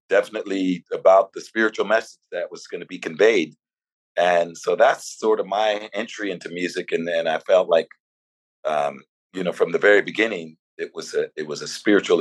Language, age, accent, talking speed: English, 40-59, American, 190 wpm